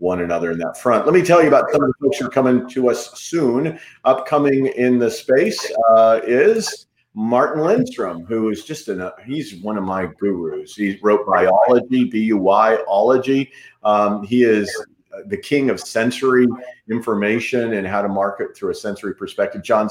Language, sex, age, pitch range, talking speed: English, male, 40-59, 100-135 Hz, 170 wpm